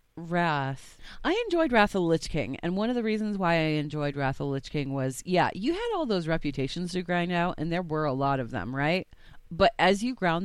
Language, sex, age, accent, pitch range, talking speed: English, female, 30-49, American, 145-185 Hz, 245 wpm